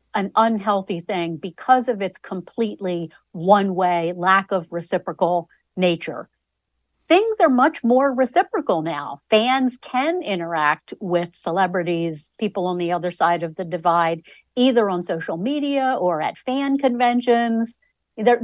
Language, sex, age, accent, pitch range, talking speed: English, female, 50-69, American, 170-230 Hz, 130 wpm